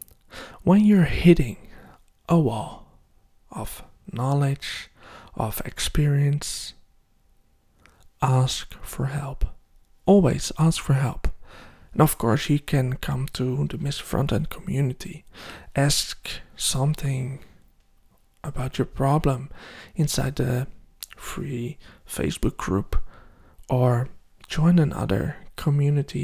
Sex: male